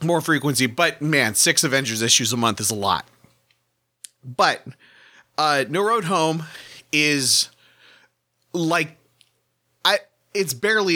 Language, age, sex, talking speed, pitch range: English, 30-49, male, 120 wpm, 110-155 Hz